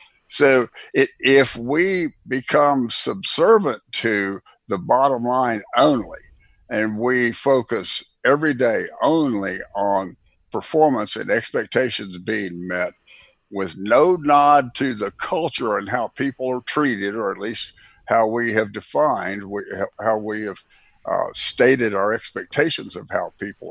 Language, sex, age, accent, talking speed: English, male, 60-79, American, 125 wpm